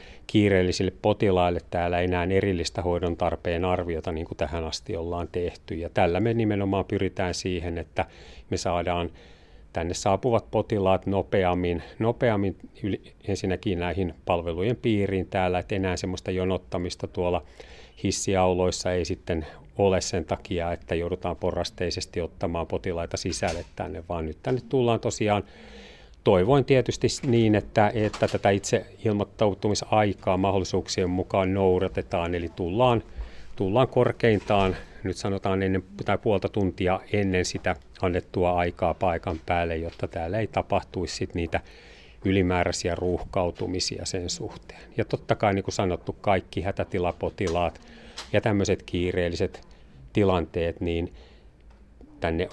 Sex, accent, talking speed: male, native, 120 wpm